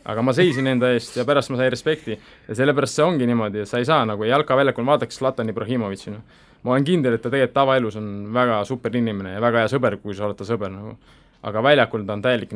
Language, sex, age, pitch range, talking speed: English, male, 20-39, 110-140 Hz, 230 wpm